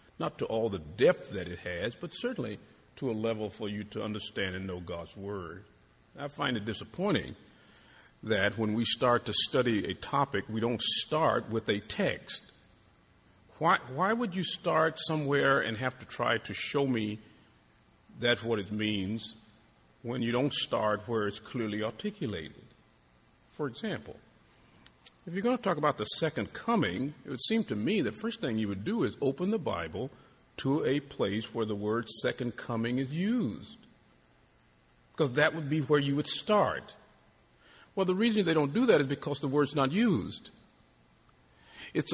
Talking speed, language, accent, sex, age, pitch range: 175 wpm, English, American, male, 50-69, 105-150 Hz